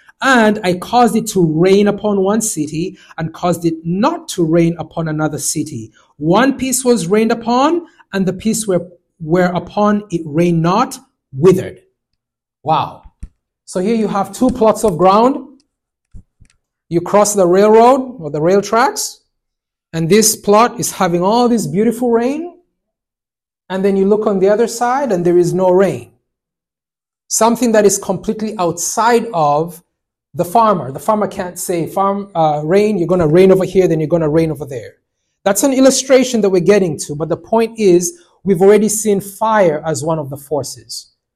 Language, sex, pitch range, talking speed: English, male, 155-210 Hz, 170 wpm